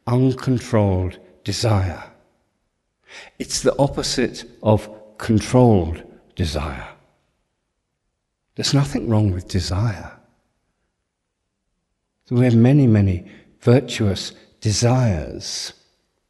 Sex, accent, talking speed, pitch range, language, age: male, British, 70 wpm, 90-115 Hz, English, 60-79